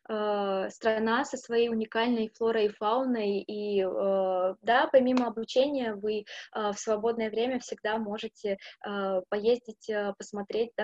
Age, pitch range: 20-39, 205-245 Hz